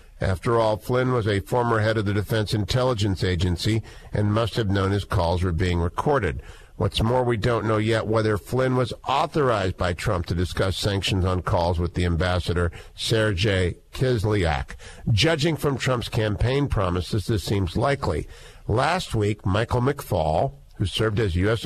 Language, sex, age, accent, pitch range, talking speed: English, male, 50-69, American, 100-125 Hz, 165 wpm